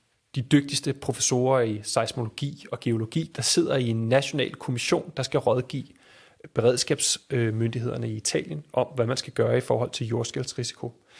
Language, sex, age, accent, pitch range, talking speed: Danish, male, 30-49, native, 120-150 Hz, 150 wpm